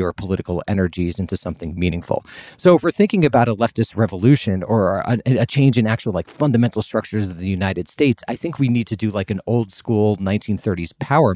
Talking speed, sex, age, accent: 200 wpm, male, 30-49, American